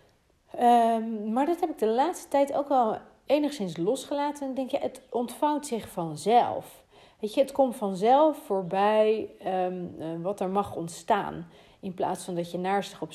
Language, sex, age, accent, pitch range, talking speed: Dutch, female, 40-59, Dutch, 175-230 Hz, 170 wpm